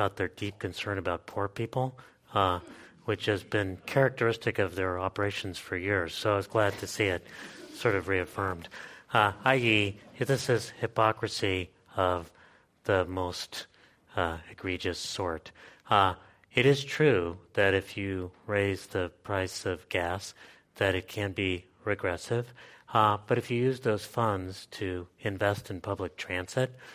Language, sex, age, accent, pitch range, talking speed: English, male, 30-49, American, 95-110 Hz, 145 wpm